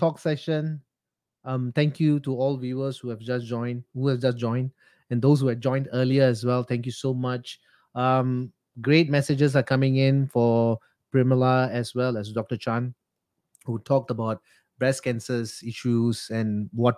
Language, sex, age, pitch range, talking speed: English, male, 30-49, 120-150 Hz, 175 wpm